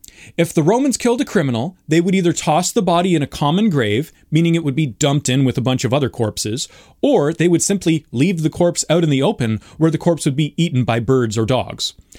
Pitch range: 130-185 Hz